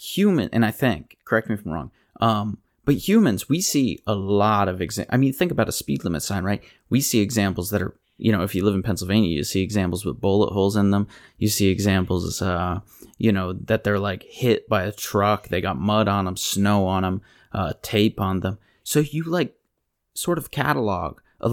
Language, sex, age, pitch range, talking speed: English, male, 30-49, 95-115 Hz, 220 wpm